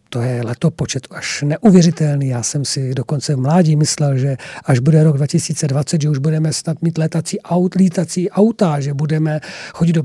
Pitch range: 150-195 Hz